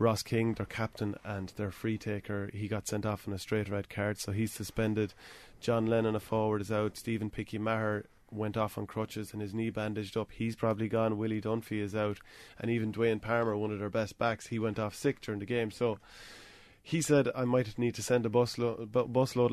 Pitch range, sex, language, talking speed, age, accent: 100-115 Hz, male, English, 220 wpm, 20-39, Irish